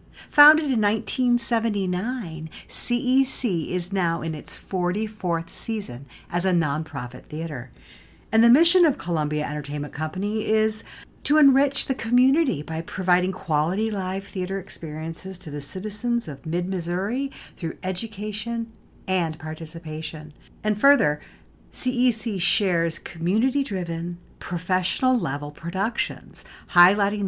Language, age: English, 50-69